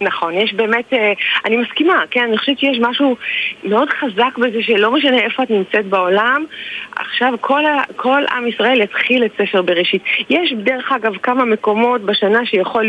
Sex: female